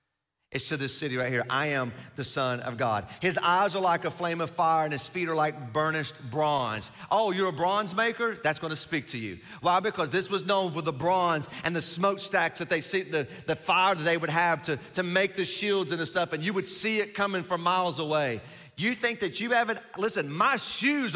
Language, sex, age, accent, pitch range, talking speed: English, male, 40-59, American, 135-180 Hz, 235 wpm